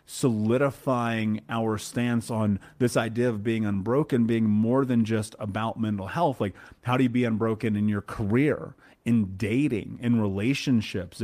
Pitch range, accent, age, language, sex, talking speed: 105-125 Hz, American, 30-49, English, male, 155 wpm